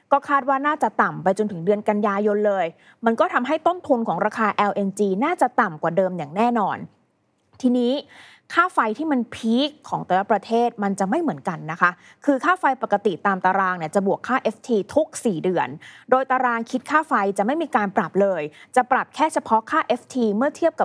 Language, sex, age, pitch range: Thai, female, 20-39, 200-270 Hz